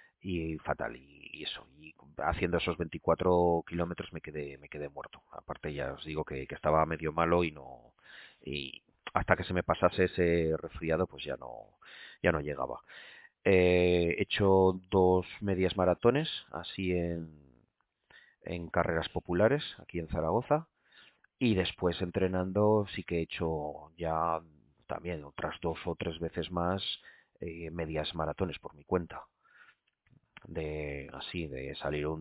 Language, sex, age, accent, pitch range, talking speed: Spanish, male, 30-49, Spanish, 80-100 Hz, 145 wpm